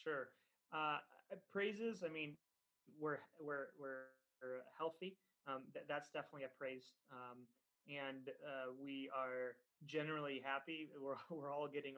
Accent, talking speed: American, 130 wpm